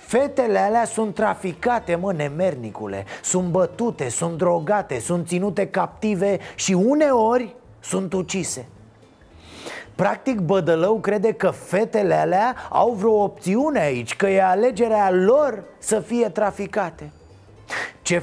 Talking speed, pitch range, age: 115 wpm, 170-220 Hz, 30-49